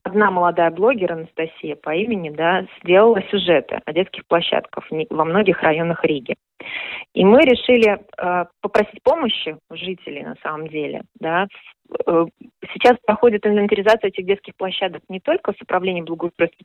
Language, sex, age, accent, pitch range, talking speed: Russian, female, 30-49, native, 170-215 Hz, 140 wpm